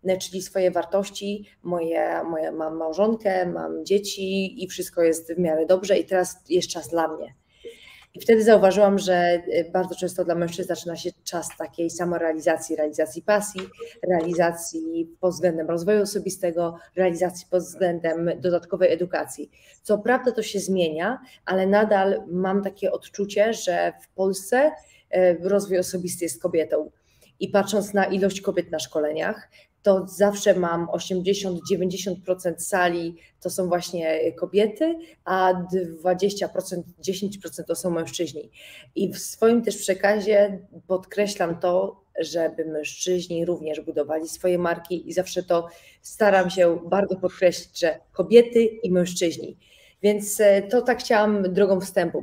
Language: Polish